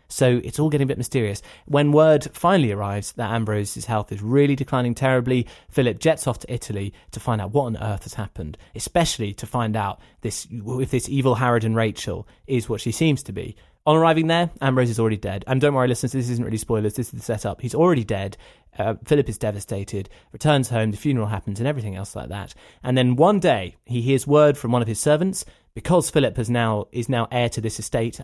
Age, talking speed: 20-39, 225 wpm